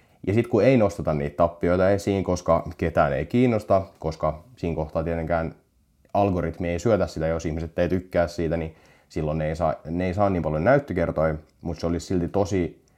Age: 30-49